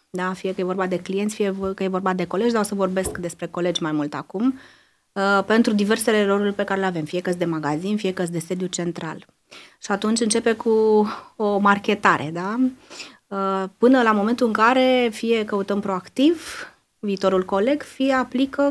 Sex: female